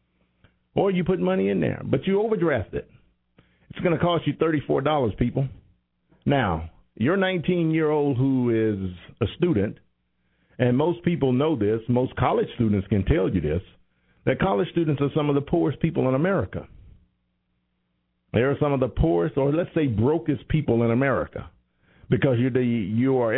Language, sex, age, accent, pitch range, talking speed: English, male, 50-69, American, 90-140 Hz, 160 wpm